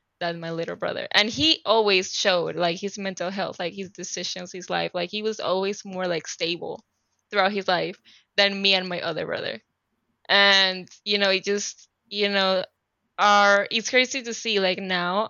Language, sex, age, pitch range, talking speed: English, female, 20-39, 185-220 Hz, 185 wpm